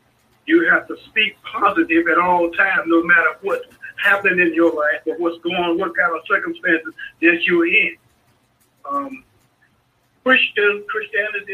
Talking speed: 150 wpm